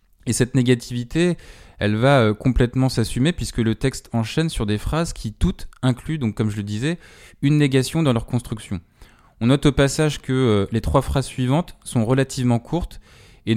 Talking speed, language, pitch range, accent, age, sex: 175 wpm, French, 110-135 Hz, French, 20-39, male